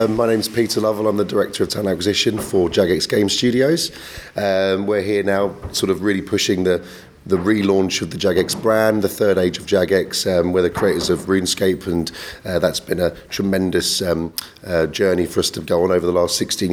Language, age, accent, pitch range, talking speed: English, 30-49, British, 85-105 Hz, 210 wpm